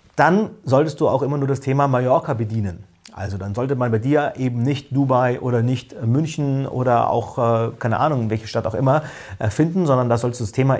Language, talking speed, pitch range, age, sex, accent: German, 210 wpm, 120-155 Hz, 40-59, male, German